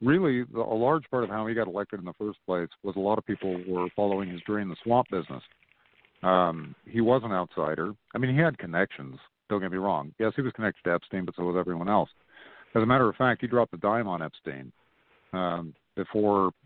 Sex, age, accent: male, 50-69, American